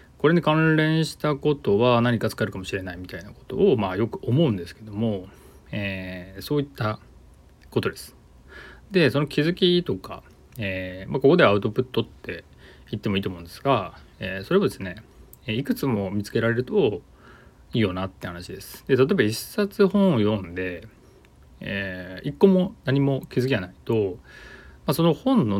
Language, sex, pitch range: Japanese, male, 90-130 Hz